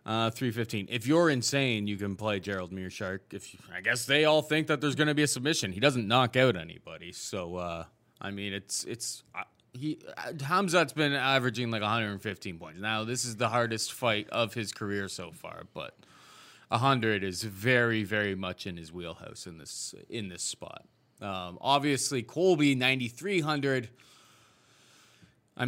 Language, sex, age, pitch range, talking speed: English, male, 20-39, 100-125 Hz, 175 wpm